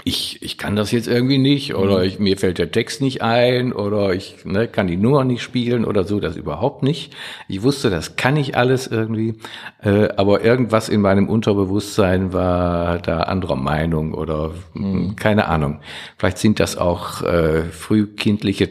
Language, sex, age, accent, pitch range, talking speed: German, male, 50-69, German, 90-115 Hz, 175 wpm